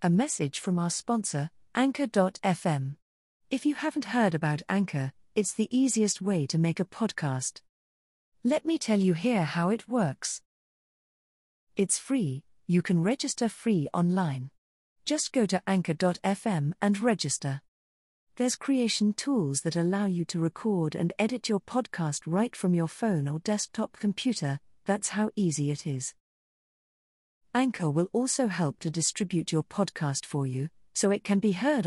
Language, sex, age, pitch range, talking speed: English, female, 40-59, 145-215 Hz, 150 wpm